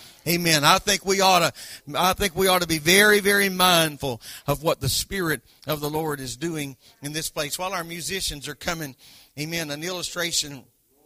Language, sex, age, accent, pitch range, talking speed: English, male, 50-69, American, 140-170 Hz, 170 wpm